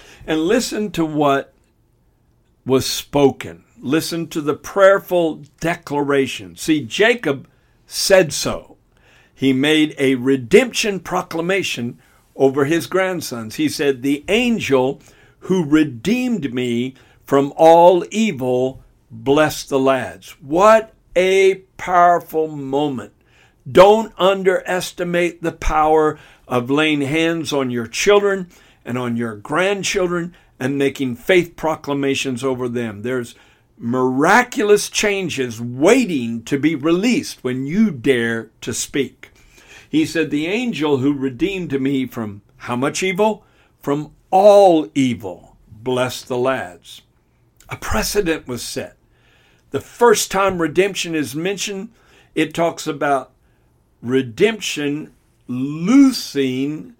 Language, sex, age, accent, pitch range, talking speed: English, male, 60-79, American, 130-180 Hz, 110 wpm